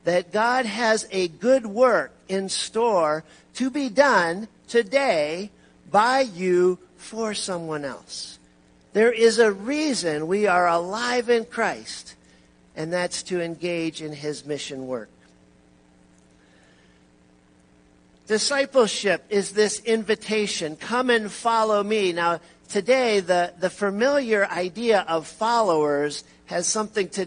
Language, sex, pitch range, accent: English, male, 160-220 Hz, American